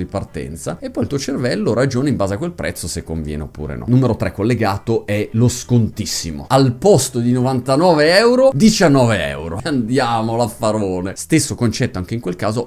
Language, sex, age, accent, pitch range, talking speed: Italian, male, 30-49, native, 100-140 Hz, 180 wpm